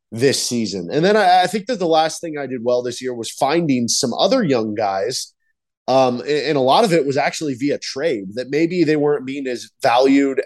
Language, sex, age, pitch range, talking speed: English, male, 20-39, 125-155 Hz, 230 wpm